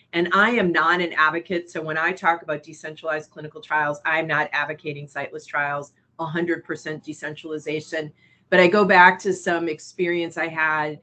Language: English